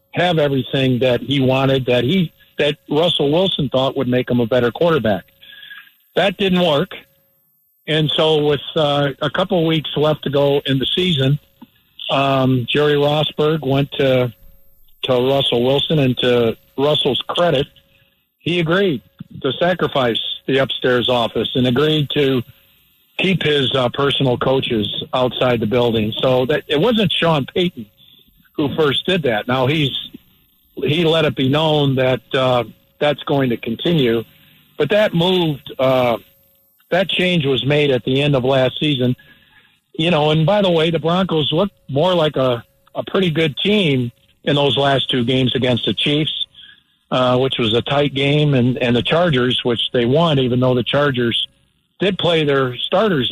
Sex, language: male, English